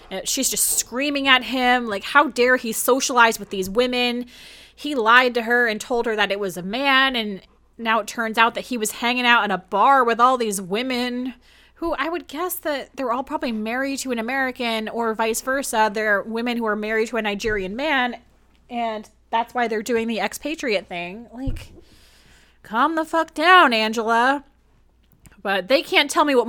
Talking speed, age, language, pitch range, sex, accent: 195 wpm, 20-39, English, 215-265 Hz, female, American